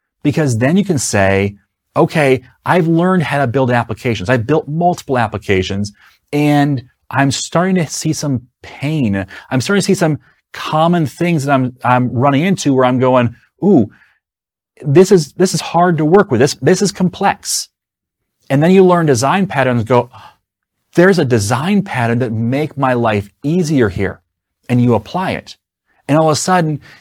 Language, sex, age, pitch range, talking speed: English, male, 30-49, 115-155 Hz, 170 wpm